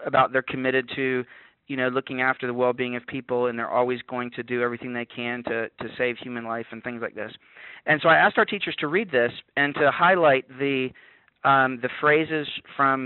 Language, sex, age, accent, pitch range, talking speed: English, male, 40-59, American, 120-140 Hz, 215 wpm